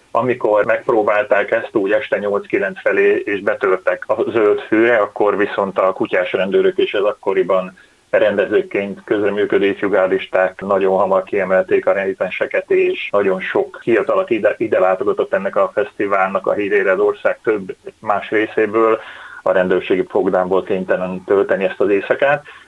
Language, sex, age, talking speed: Hungarian, male, 30-49, 140 wpm